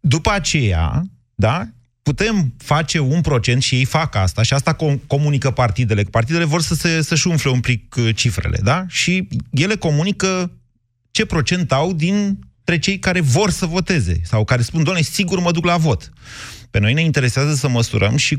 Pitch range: 110-150 Hz